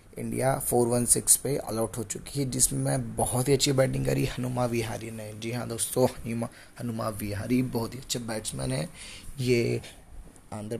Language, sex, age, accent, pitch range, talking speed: Hindi, male, 20-39, native, 110-130 Hz, 170 wpm